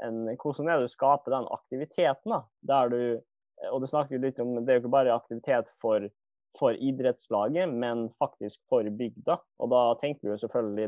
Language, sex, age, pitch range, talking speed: English, male, 20-39, 110-145 Hz, 170 wpm